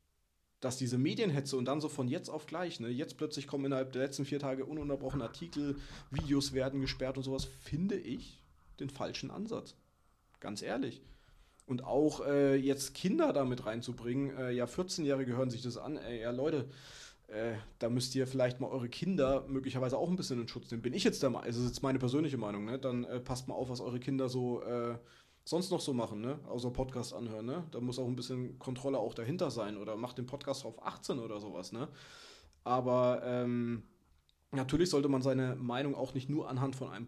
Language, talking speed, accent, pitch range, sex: German, 210 wpm, German, 120-140 Hz, male